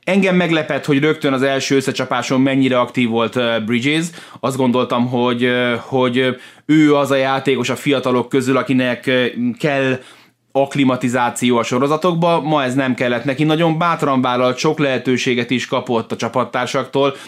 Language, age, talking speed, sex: Hungarian, 20-39, 140 wpm, male